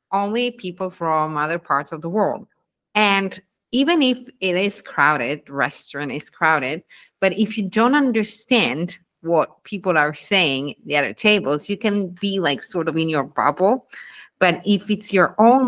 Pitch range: 160-225 Hz